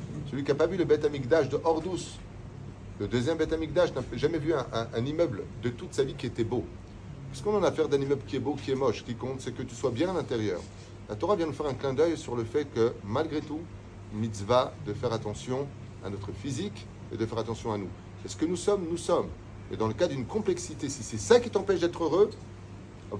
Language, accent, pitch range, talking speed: French, French, 105-145 Hz, 255 wpm